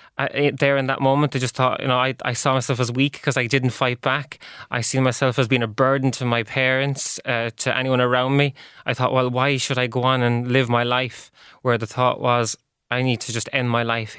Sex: male